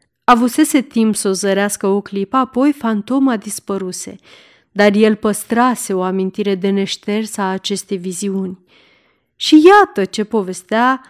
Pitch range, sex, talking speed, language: 200-255 Hz, female, 130 wpm, Romanian